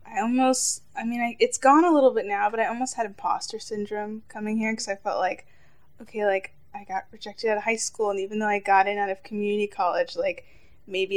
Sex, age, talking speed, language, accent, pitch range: female, 10-29, 230 wpm, English, American, 195-240 Hz